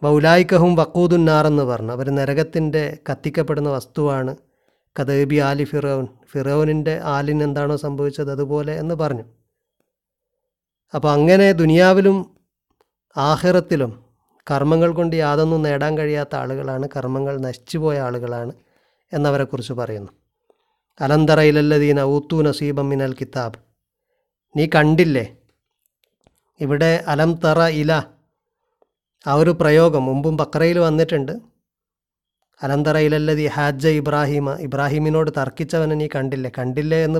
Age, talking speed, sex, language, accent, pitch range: 30-49, 100 wpm, male, Malayalam, native, 140-165 Hz